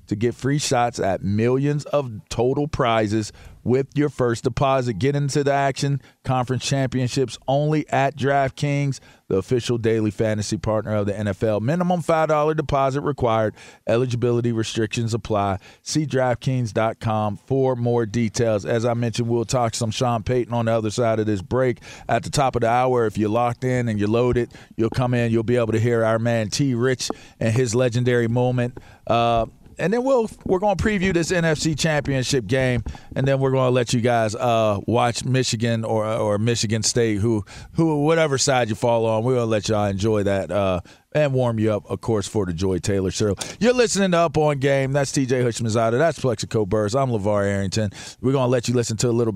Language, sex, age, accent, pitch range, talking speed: English, male, 40-59, American, 110-135 Hz, 200 wpm